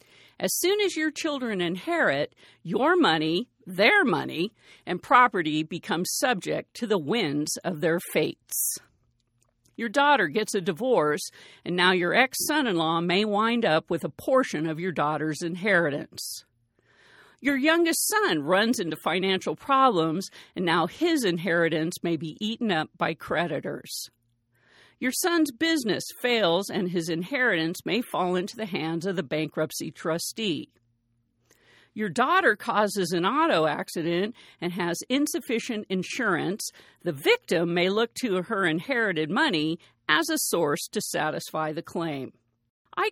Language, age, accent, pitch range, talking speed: English, 50-69, American, 160-250 Hz, 135 wpm